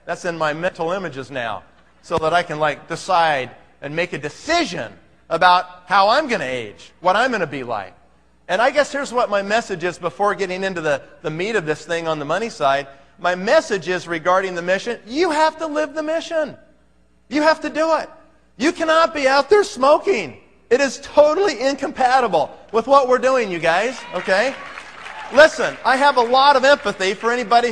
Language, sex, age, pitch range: Thai, male, 40-59, 175-255 Hz